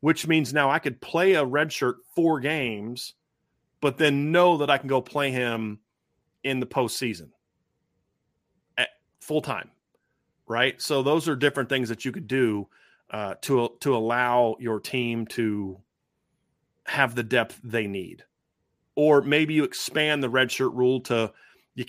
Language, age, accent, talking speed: English, 40-59, American, 160 wpm